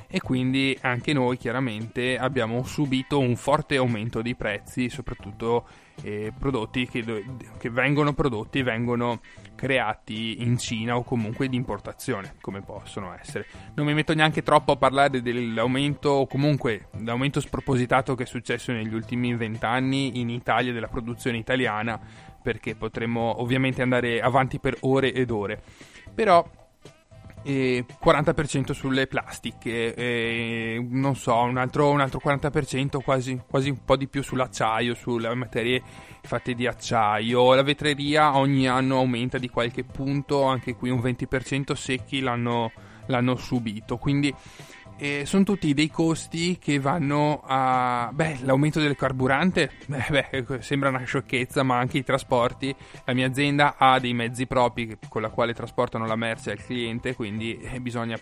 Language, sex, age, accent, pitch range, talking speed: Italian, male, 20-39, native, 120-140 Hz, 145 wpm